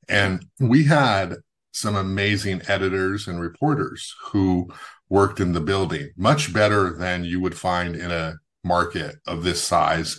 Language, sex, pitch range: English, male, 85-100 Hz